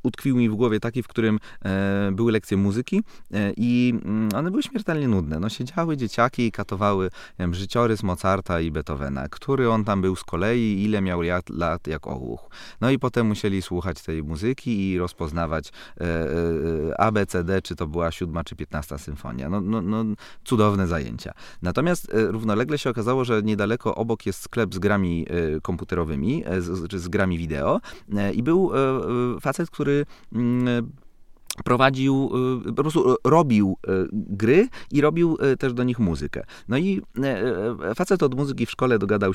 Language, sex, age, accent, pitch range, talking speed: Polish, male, 30-49, native, 90-130 Hz, 165 wpm